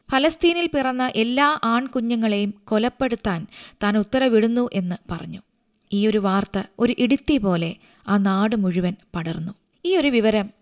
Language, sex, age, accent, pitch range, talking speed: Malayalam, female, 20-39, native, 195-245 Hz, 120 wpm